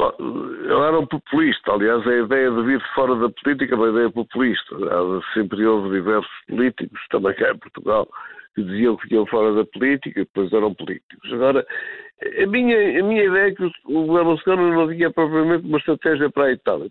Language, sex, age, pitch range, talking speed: Portuguese, male, 50-69, 110-175 Hz, 185 wpm